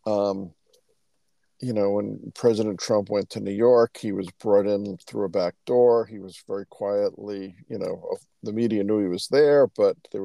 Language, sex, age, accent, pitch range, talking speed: English, male, 50-69, American, 100-120 Hz, 185 wpm